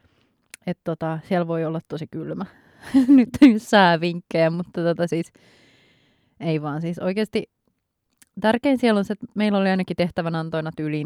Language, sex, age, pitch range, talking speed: Finnish, female, 20-39, 160-200 Hz, 145 wpm